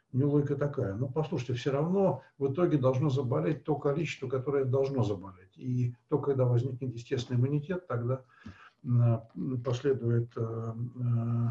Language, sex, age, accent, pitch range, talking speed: Russian, male, 60-79, native, 115-140 Hz, 130 wpm